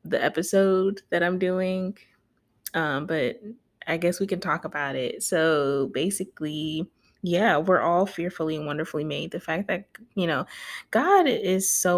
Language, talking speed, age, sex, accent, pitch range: English, 155 wpm, 20-39, female, American, 155-190 Hz